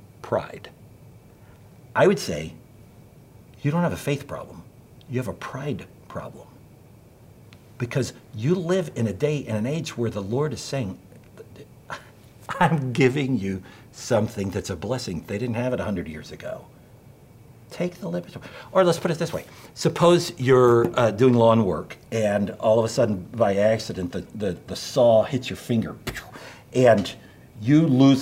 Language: English